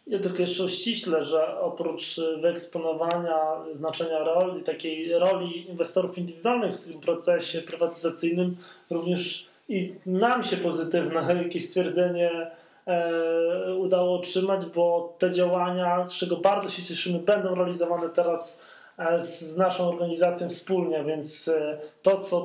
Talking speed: 120 wpm